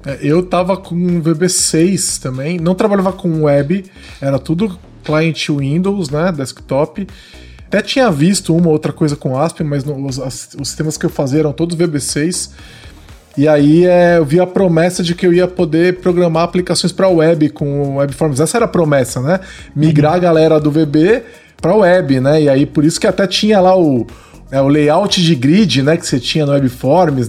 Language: Portuguese